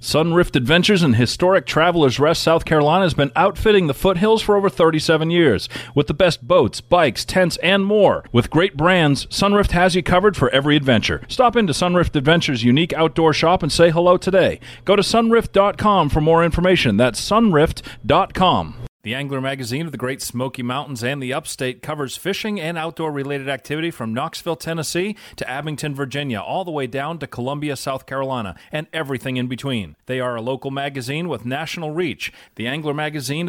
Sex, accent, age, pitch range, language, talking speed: male, American, 40-59, 120-160 Hz, English, 175 wpm